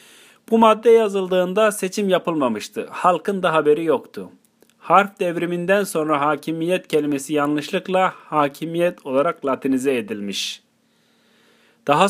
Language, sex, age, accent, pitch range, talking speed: Turkish, male, 40-59, native, 140-200 Hz, 100 wpm